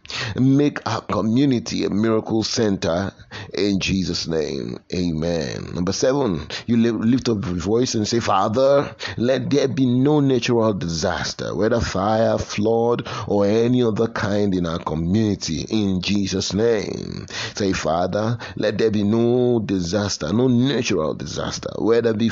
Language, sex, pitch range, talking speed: English, male, 95-120 Hz, 140 wpm